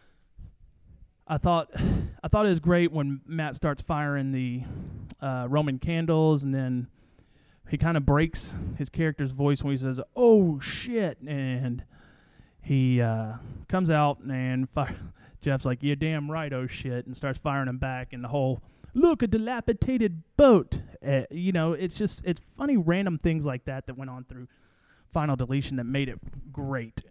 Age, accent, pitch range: 30-49, American, 130-160 Hz